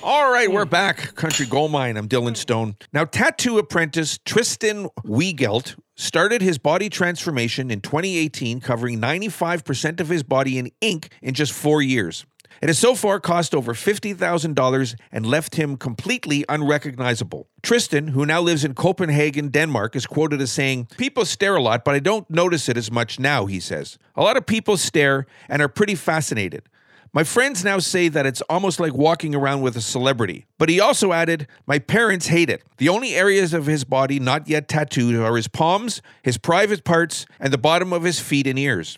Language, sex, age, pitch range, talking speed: English, male, 50-69, 130-180 Hz, 185 wpm